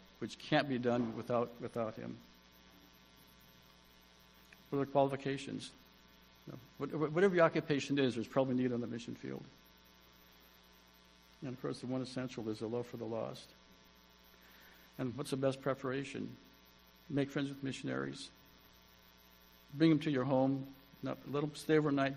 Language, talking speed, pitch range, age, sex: English, 145 wpm, 110-140 Hz, 60-79, male